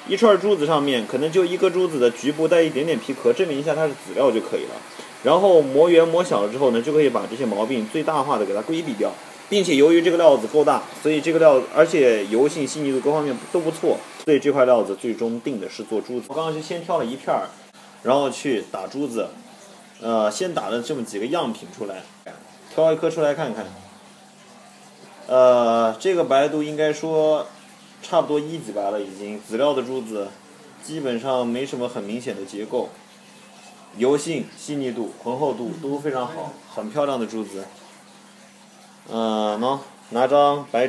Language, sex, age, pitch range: Chinese, male, 20-39, 120-160 Hz